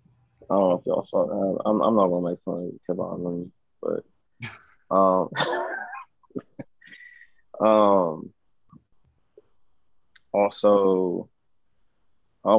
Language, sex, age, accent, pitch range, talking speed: English, male, 20-39, American, 95-110 Hz, 100 wpm